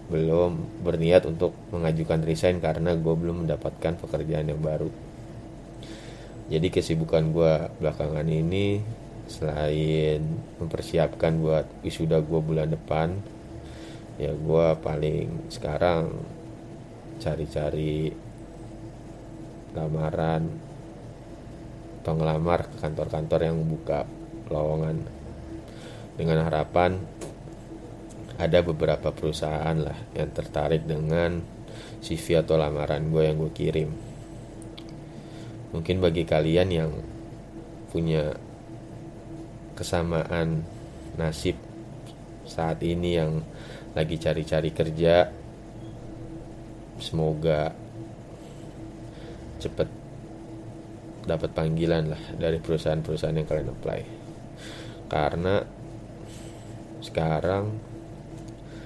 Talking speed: 80 wpm